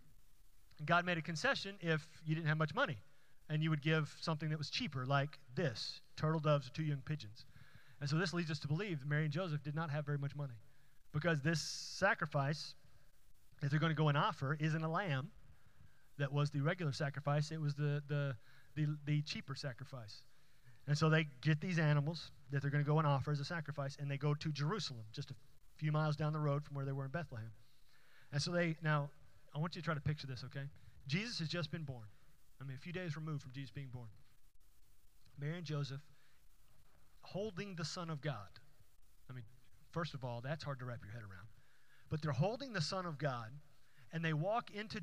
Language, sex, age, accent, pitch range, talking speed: English, male, 30-49, American, 135-160 Hz, 215 wpm